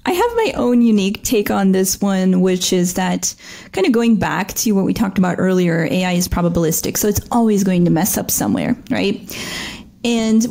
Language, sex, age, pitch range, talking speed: English, female, 30-49, 185-235 Hz, 200 wpm